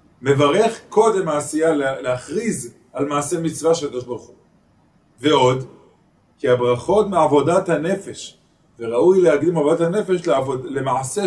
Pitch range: 130-180 Hz